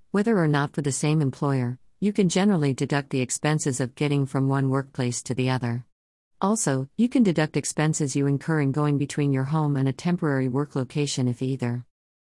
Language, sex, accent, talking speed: English, female, American, 195 wpm